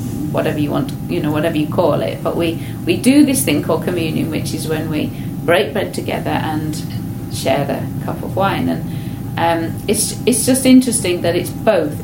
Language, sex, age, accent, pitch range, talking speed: English, female, 30-49, British, 150-205 Hz, 195 wpm